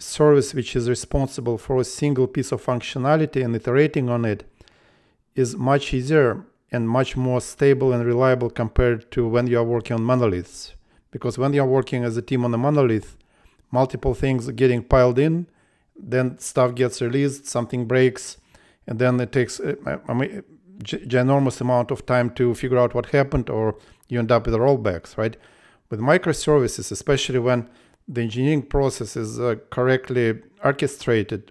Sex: male